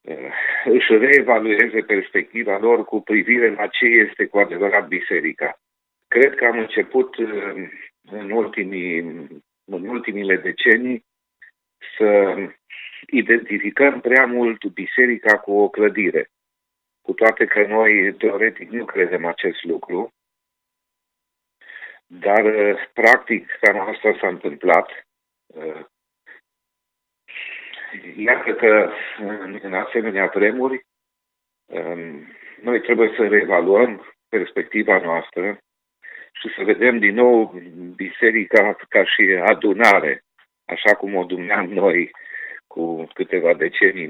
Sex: male